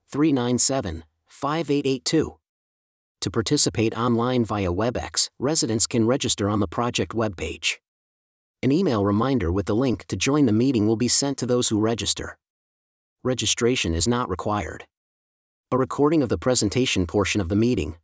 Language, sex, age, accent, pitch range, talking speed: English, male, 40-59, American, 100-125 Hz, 145 wpm